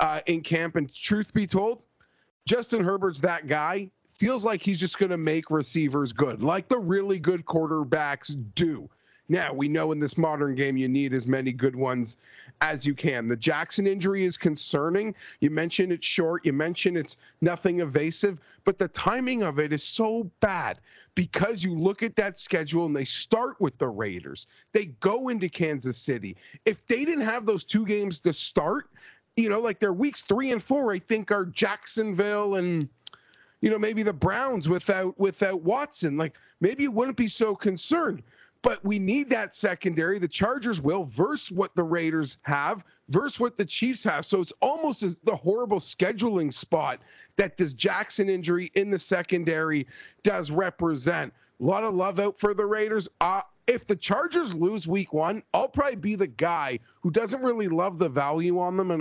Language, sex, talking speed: English, male, 185 wpm